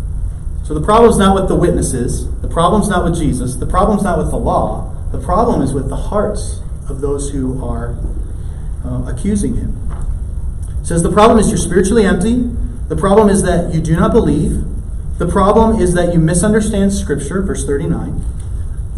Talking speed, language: 175 wpm, English